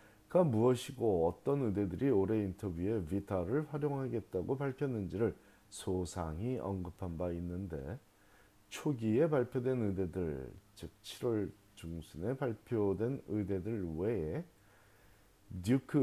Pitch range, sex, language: 90-120 Hz, male, Korean